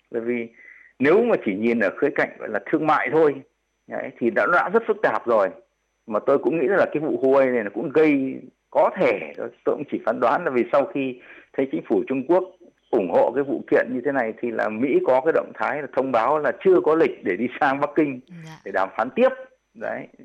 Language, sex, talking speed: Vietnamese, male, 240 wpm